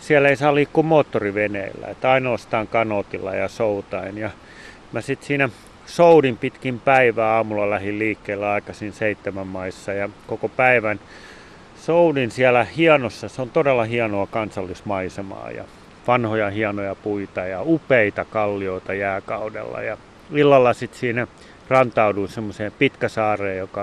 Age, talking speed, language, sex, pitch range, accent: 30-49, 125 wpm, Finnish, male, 100-120 Hz, native